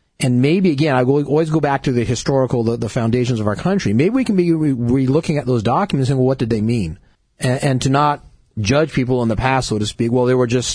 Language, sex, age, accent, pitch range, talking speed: English, male, 40-59, American, 120-150 Hz, 270 wpm